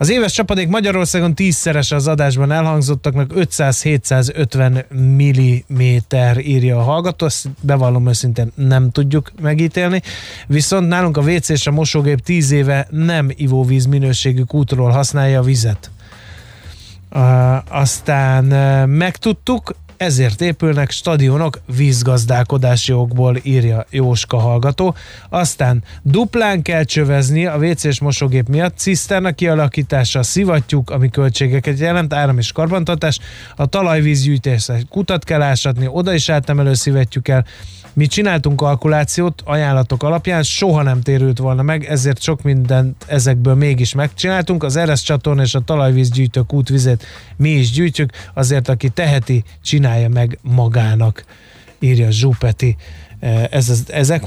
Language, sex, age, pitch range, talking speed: Hungarian, male, 20-39, 125-155 Hz, 115 wpm